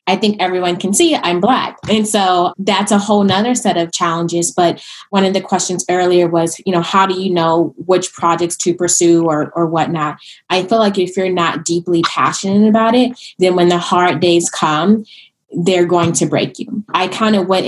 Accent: American